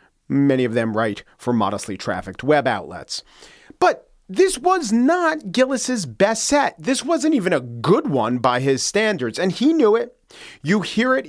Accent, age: American, 40-59